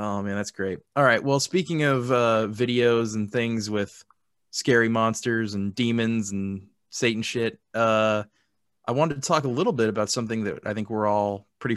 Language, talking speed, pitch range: English, 190 wpm, 105-125 Hz